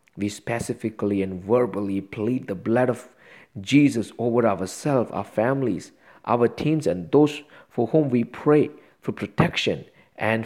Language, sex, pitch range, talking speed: English, male, 105-135 Hz, 140 wpm